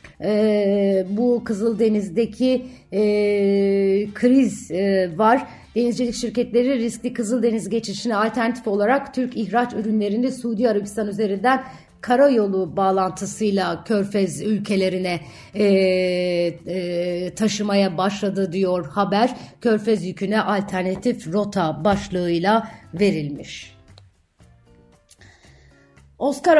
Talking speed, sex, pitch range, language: 90 wpm, female, 175-215 Hz, Turkish